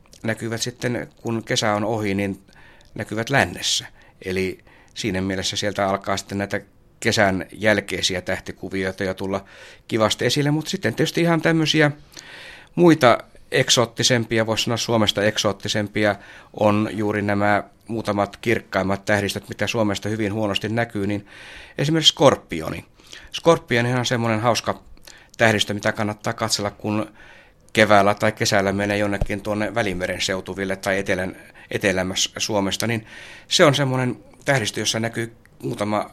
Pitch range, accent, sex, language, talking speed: 100-120 Hz, native, male, Finnish, 130 wpm